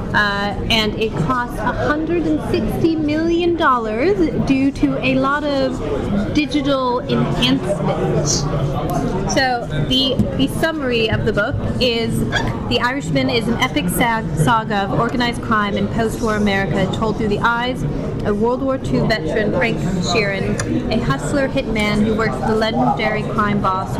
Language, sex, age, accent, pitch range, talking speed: English, female, 30-49, American, 210-260 Hz, 140 wpm